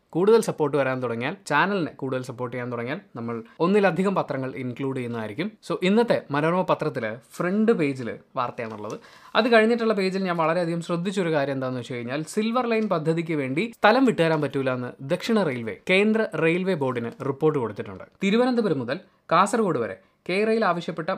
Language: Malayalam